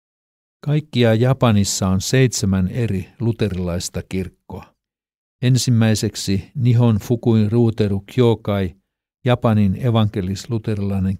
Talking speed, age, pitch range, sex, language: 75 wpm, 50-69, 95-120 Hz, male, Finnish